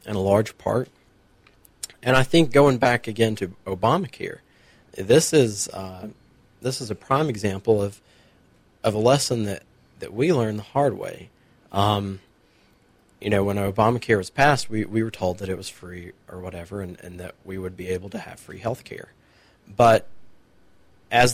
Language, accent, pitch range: English, American, 100-120 Hz